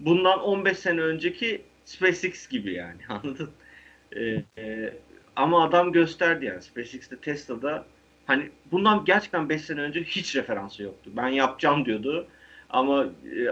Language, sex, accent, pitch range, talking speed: Turkish, male, native, 110-155 Hz, 135 wpm